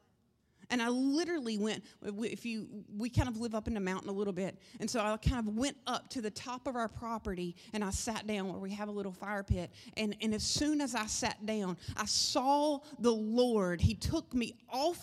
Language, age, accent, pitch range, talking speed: English, 30-49, American, 185-240 Hz, 230 wpm